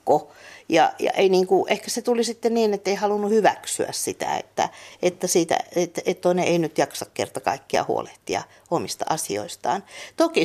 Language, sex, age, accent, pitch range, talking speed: Finnish, female, 50-69, native, 200-240 Hz, 165 wpm